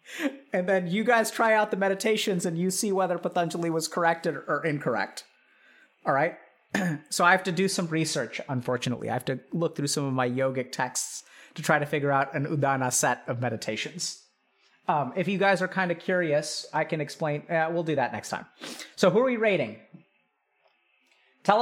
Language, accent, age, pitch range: English, American, 30-49, 150-195 Hz